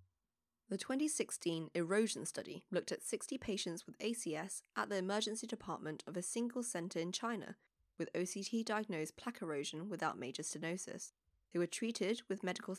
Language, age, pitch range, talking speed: English, 20-39, 165-230 Hz, 150 wpm